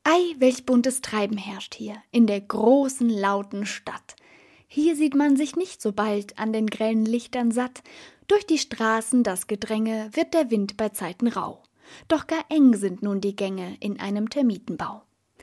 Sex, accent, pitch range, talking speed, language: female, German, 205-265 Hz, 170 wpm, German